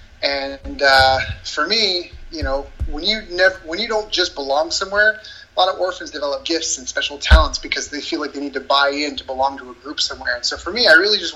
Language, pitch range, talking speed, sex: English, 140-170 Hz, 245 wpm, male